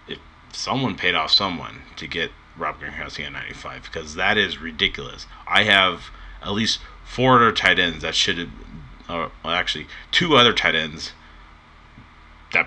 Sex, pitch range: male, 80-105 Hz